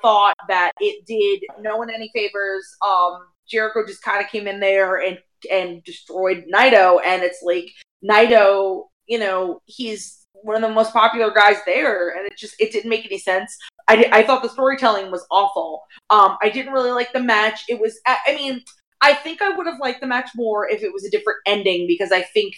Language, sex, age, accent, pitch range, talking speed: English, female, 20-39, American, 185-240 Hz, 205 wpm